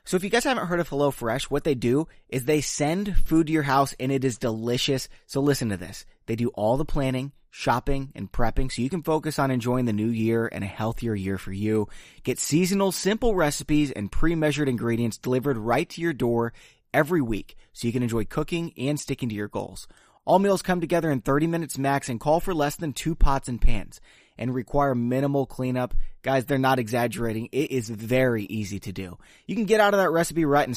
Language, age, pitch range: English, 20-39, 115-155 Hz